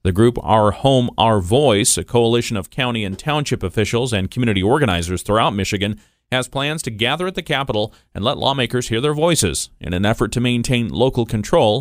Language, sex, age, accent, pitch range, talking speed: English, male, 40-59, American, 100-125 Hz, 195 wpm